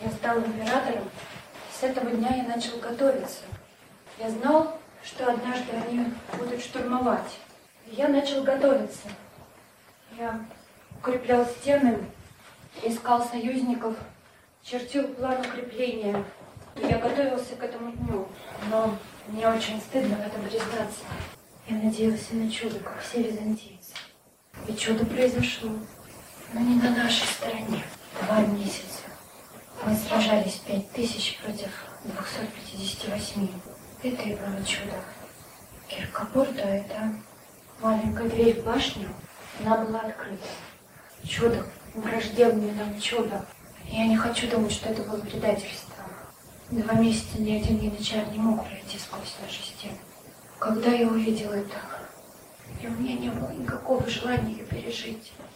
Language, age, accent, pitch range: Russian, 30-49, native, 215-245 Hz